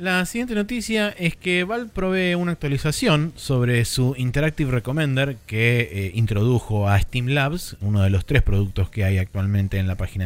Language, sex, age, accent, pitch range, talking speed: Spanish, male, 20-39, Argentinian, 100-135 Hz, 175 wpm